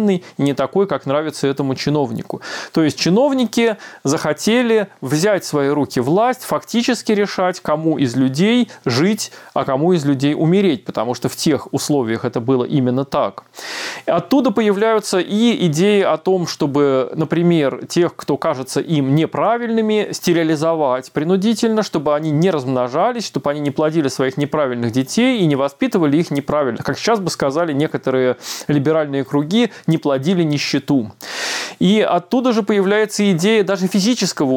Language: Russian